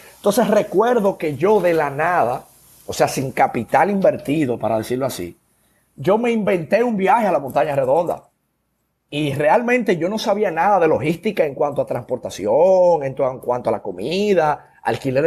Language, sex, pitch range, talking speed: Spanish, male, 140-200 Hz, 165 wpm